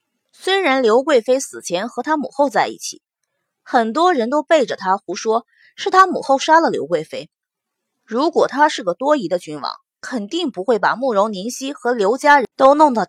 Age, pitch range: 20-39, 235-340 Hz